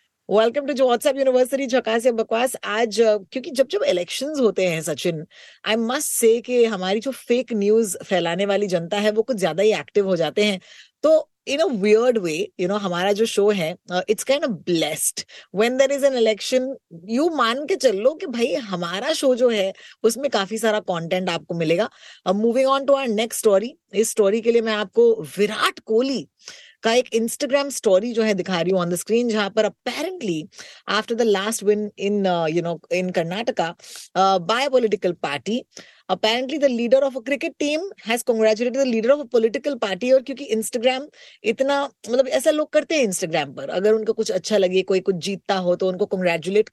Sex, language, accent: female, Hindi, native